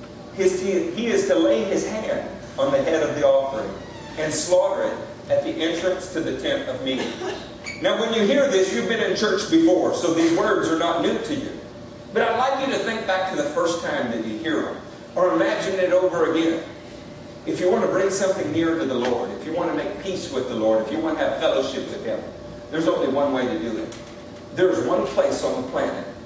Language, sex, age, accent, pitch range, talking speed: English, male, 50-69, American, 125-190 Hz, 235 wpm